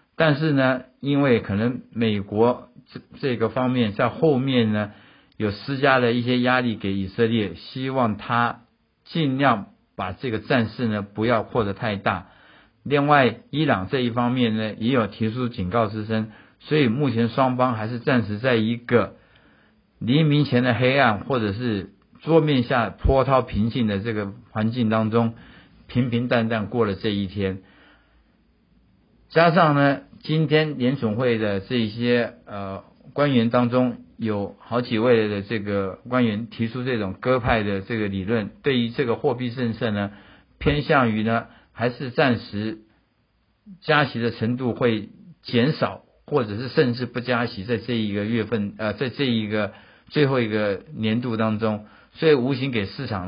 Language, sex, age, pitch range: Chinese, male, 50-69, 105-130 Hz